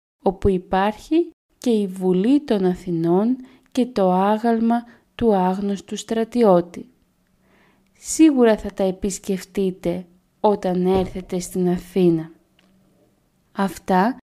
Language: Greek